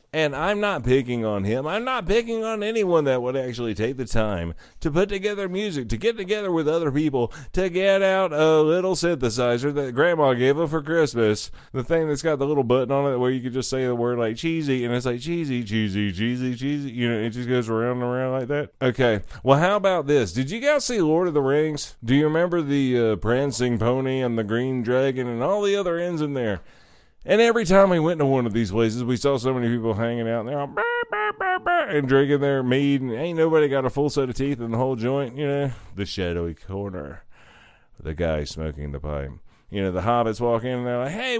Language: English